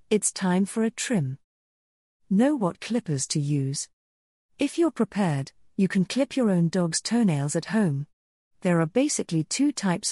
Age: 50-69